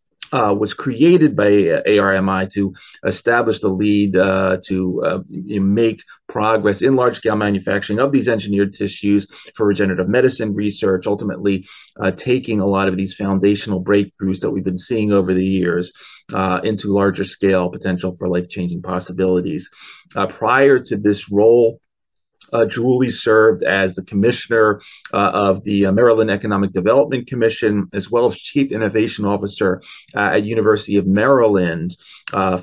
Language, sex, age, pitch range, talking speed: English, male, 30-49, 95-105 Hz, 145 wpm